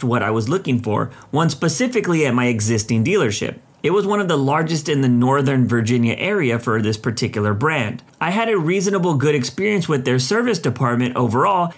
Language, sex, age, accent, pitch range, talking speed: English, male, 30-49, American, 125-185 Hz, 190 wpm